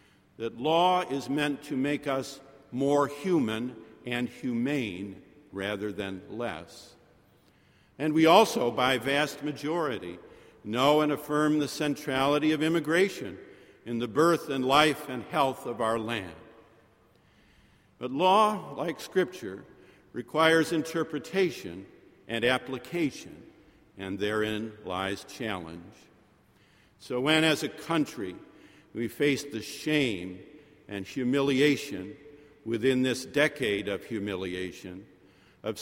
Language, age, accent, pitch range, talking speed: English, 50-69, American, 115-155 Hz, 110 wpm